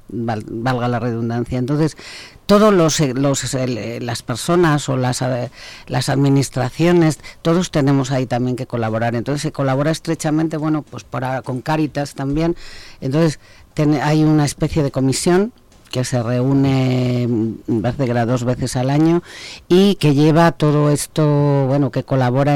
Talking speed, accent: 140 wpm, Spanish